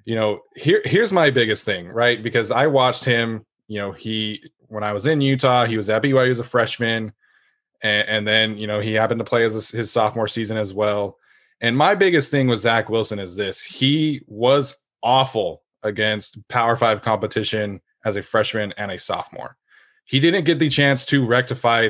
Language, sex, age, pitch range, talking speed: English, male, 20-39, 105-125 Hz, 195 wpm